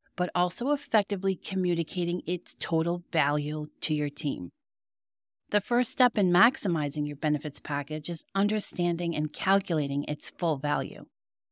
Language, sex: English, female